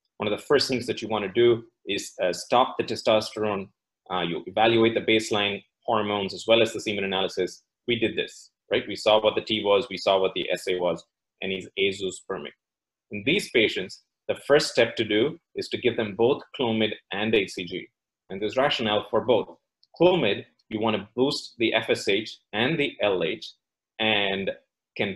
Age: 30-49